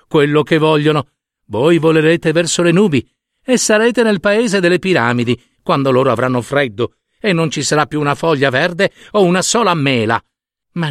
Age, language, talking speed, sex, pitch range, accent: 50-69, Italian, 170 wpm, male, 125-190 Hz, native